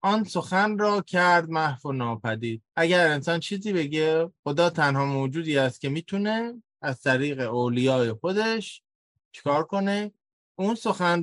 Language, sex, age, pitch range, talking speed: Persian, male, 20-39, 135-185 Hz, 135 wpm